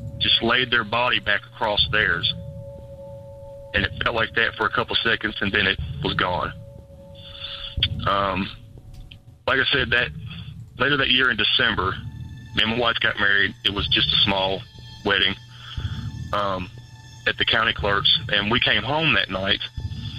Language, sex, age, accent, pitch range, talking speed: English, male, 40-59, American, 105-120 Hz, 160 wpm